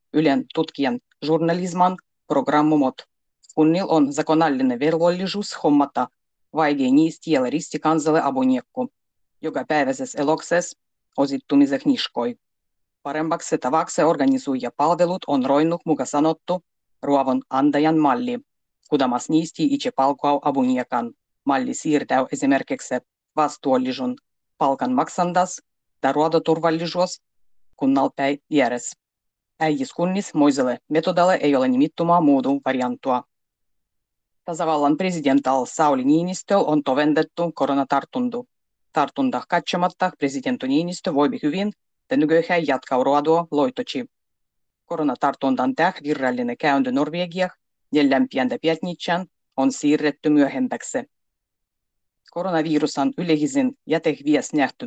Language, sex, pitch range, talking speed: Finnish, female, 135-175 Hz, 90 wpm